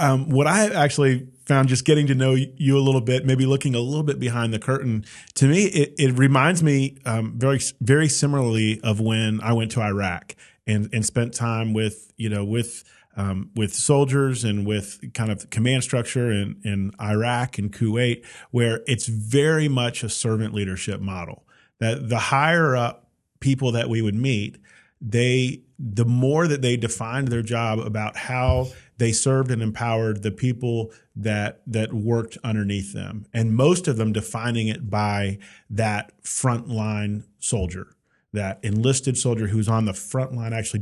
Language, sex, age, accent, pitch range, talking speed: English, male, 40-59, American, 110-130 Hz, 170 wpm